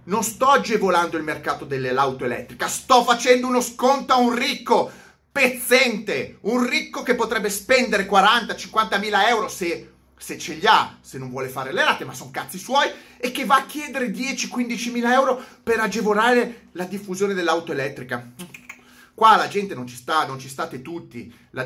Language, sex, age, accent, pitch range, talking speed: Italian, male, 30-49, native, 155-245 Hz, 170 wpm